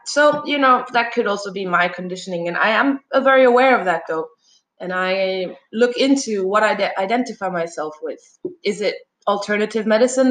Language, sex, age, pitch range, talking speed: English, female, 20-39, 185-245 Hz, 175 wpm